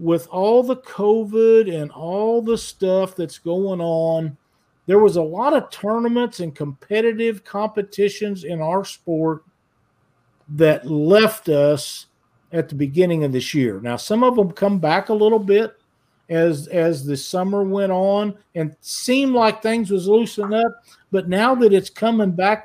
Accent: American